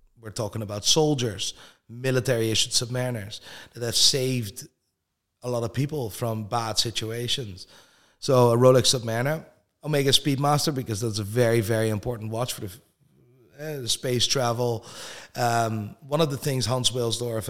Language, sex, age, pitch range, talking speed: English, male, 30-49, 105-125 Hz, 145 wpm